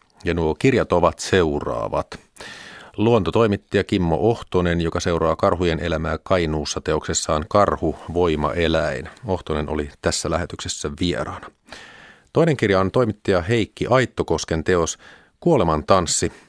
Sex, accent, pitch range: male, native, 80-100 Hz